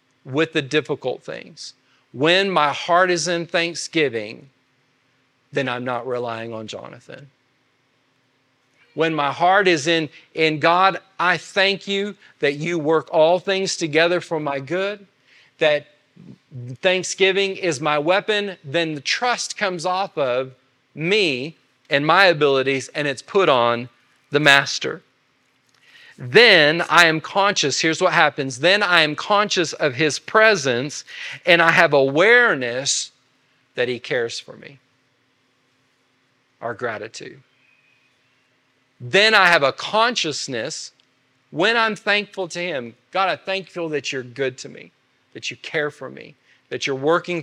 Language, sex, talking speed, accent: English, male, 135 wpm, American